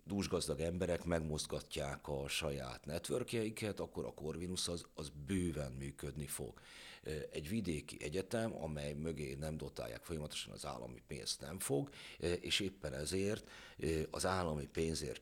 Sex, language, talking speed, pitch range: male, Hungarian, 130 wpm, 70-85 Hz